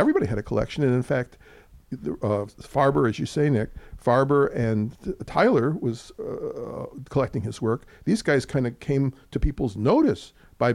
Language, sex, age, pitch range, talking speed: English, male, 50-69, 115-150 Hz, 170 wpm